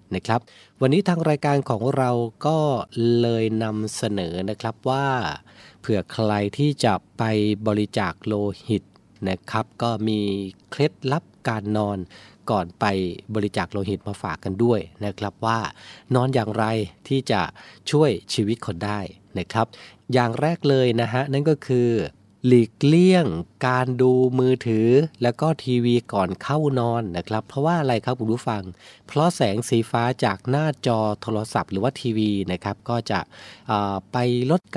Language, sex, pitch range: Thai, male, 100-125 Hz